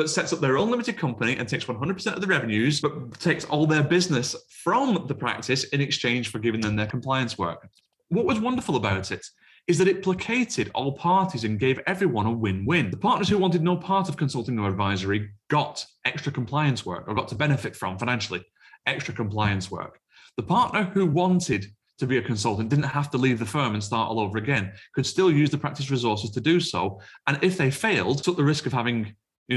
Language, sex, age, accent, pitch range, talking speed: English, male, 30-49, British, 115-160 Hz, 215 wpm